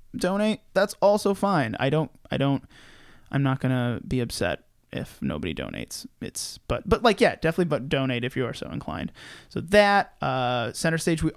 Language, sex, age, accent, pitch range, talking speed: English, male, 20-39, American, 135-185 Hz, 185 wpm